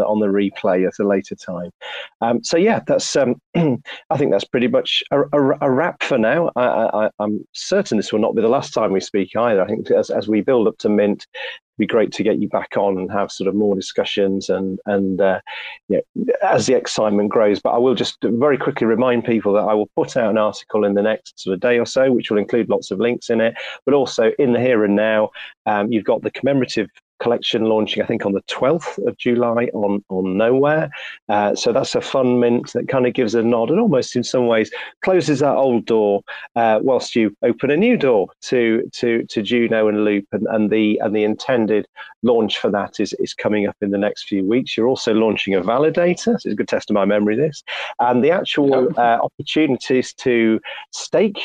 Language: English